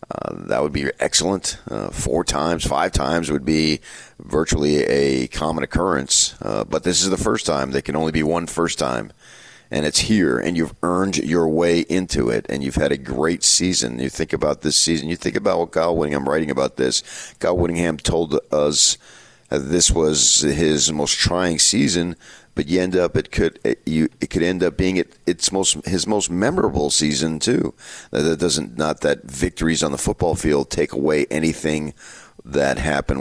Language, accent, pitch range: English, American, 70-85 Hz